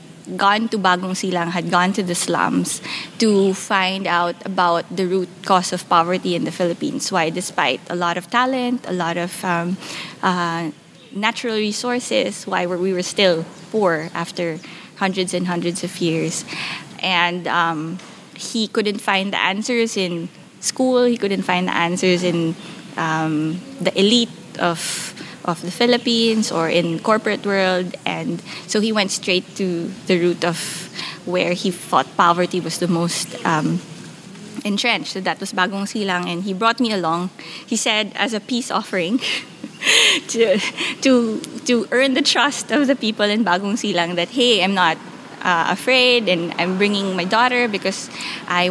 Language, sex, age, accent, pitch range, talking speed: English, female, 20-39, Filipino, 175-220 Hz, 160 wpm